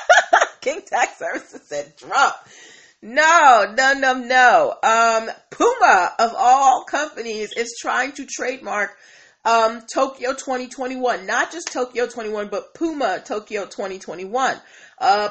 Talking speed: 115 wpm